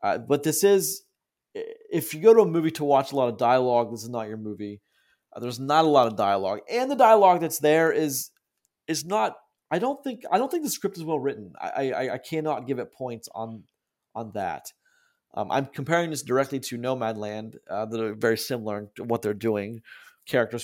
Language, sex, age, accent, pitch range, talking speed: English, male, 30-49, American, 110-150 Hz, 220 wpm